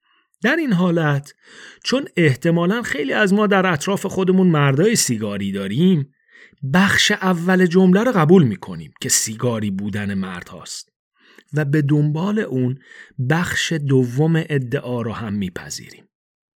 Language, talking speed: Persian, 125 wpm